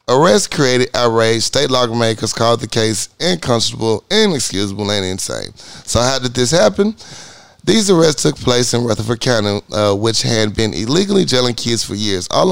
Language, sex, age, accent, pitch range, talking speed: English, male, 30-49, American, 105-140 Hz, 165 wpm